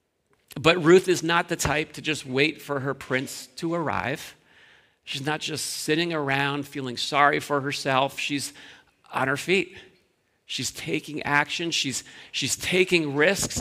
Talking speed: 150 wpm